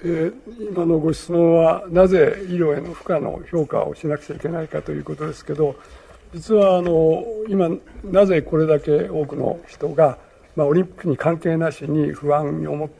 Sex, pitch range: male, 155-200 Hz